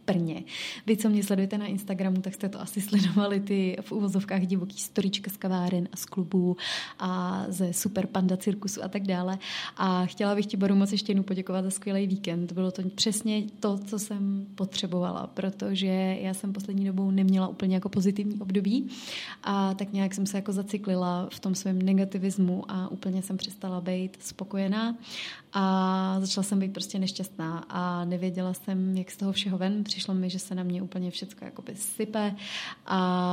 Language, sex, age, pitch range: Czech, female, 20-39, 185-205 Hz